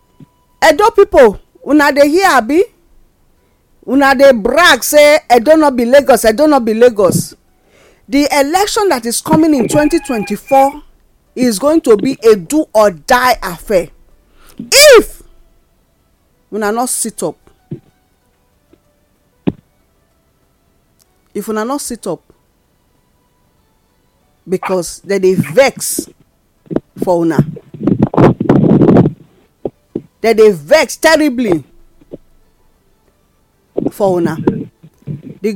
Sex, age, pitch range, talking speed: female, 40-59, 215-345 Hz, 95 wpm